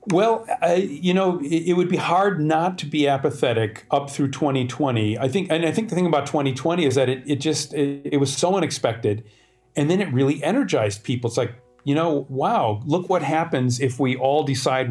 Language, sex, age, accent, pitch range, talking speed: English, male, 40-59, American, 125-155 Hz, 215 wpm